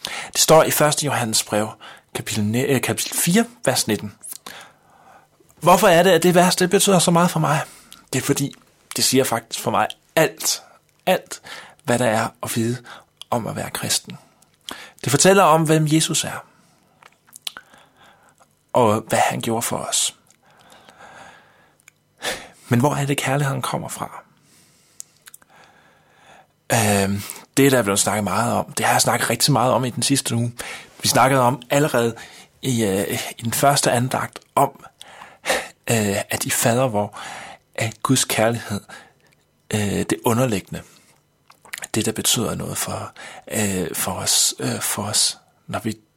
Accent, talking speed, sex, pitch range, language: native, 140 wpm, male, 110-140 Hz, Danish